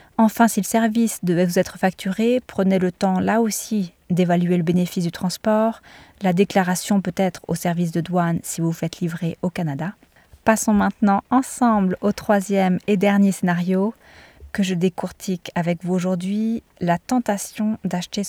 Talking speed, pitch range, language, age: 160 wpm, 180-215 Hz, French, 20-39